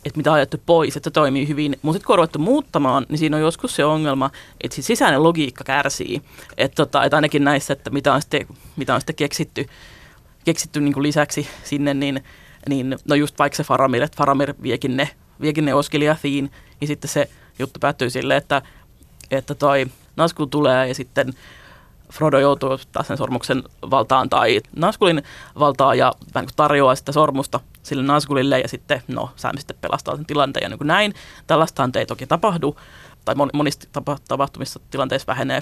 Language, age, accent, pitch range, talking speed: Finnish, 20-39, native, 135-155 Hz, 175 wpm